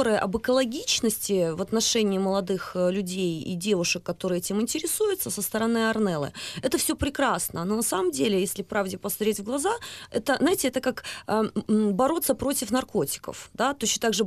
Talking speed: 160 wpm